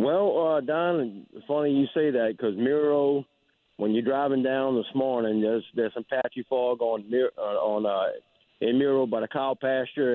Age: 50-69